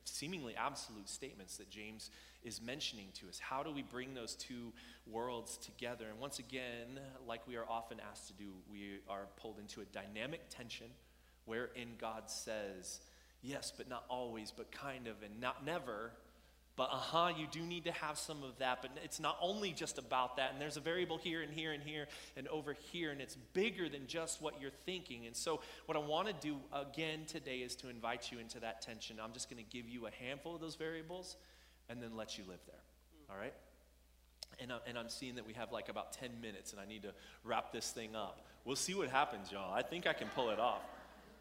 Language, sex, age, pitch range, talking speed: English, male, 30-49, 115-165 Hz, 215 wpm